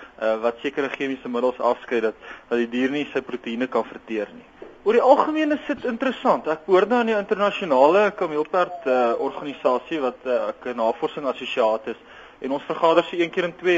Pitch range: 130-180 Hz